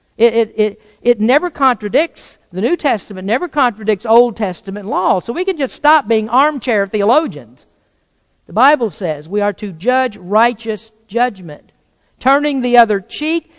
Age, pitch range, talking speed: 50-69, 190-245 Hz, 155 wpm